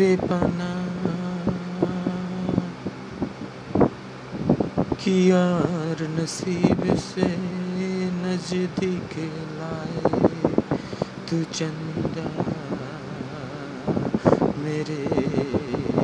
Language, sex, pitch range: Bengali, male, 115-175 Hz